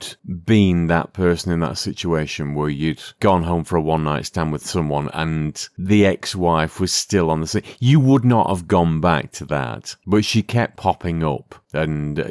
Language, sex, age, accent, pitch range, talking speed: English, male, 40-59, British, 80-110 Hz, 185 wpm